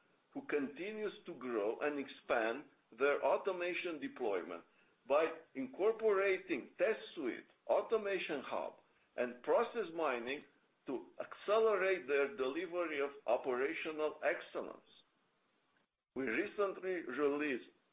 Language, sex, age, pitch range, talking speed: English, male, 50-69, 160-225 Hz, 95 wpm